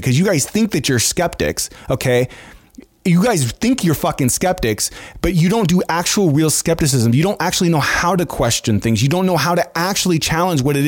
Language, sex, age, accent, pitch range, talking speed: English, male, 30-49, American, 125-175 Hz, 210 wpm